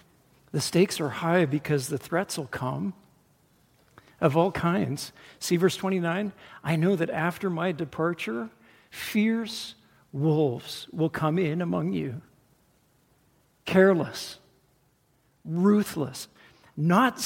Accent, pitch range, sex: American, 150-195 Hz, male